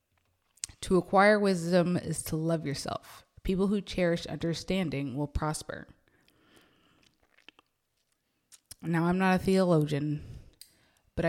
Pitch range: 160-195 Hz